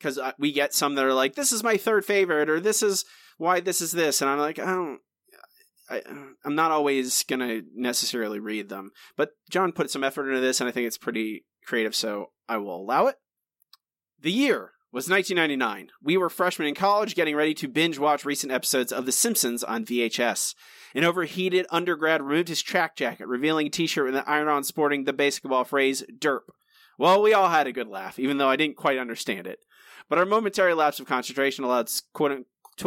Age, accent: 30-49, American